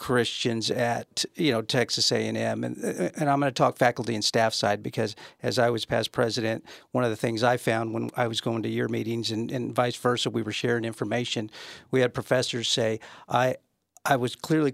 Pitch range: 115-130 Hz